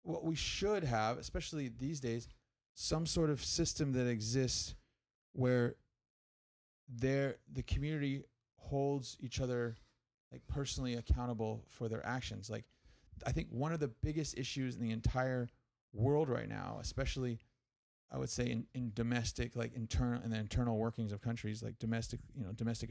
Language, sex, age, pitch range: English, male, 30-49, 110-130 Hz